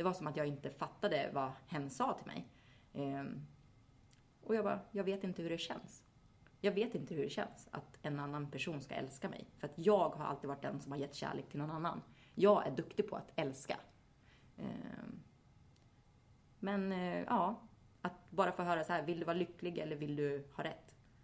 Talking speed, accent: 200 wpm, Swedish